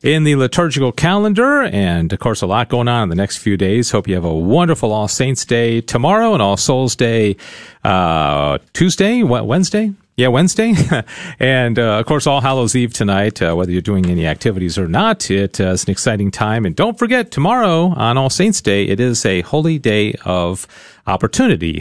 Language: English